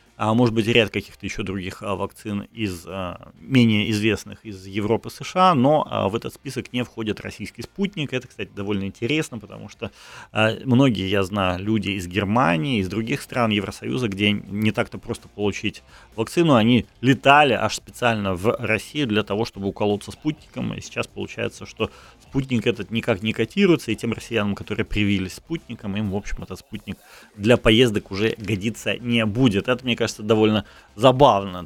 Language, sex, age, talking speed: Ukrainian, male, 30-49, 160 wpm